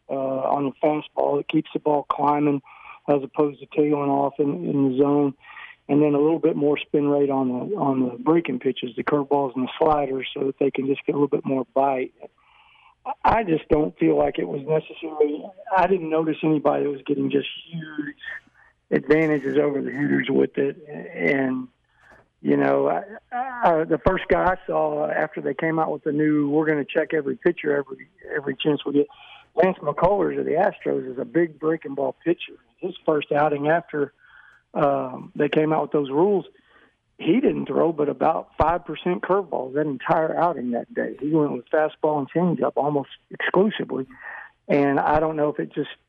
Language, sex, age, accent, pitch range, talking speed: English, male, 50-69, American, 140-160 Hz, 195 wpm